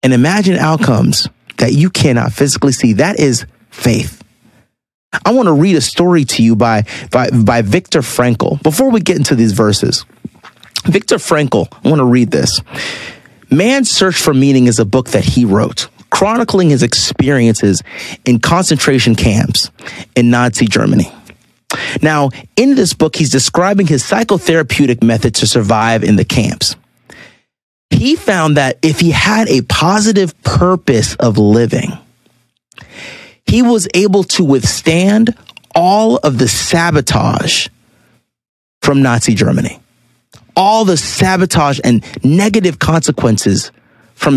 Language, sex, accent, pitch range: English, male, American, 120-180 Hz